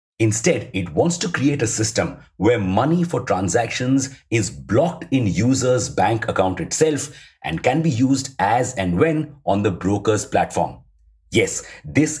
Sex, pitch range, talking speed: male, 100-140 Hz, 150 wpm